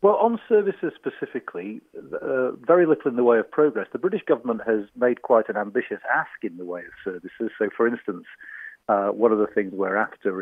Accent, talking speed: British, 205 wpm